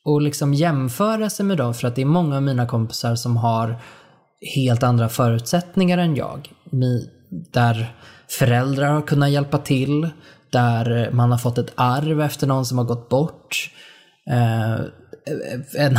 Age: 20-39